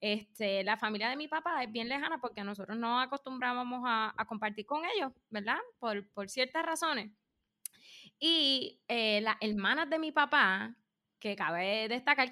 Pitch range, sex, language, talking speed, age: 215-285 Hz, female, Spanish, 160 wpm, 20-39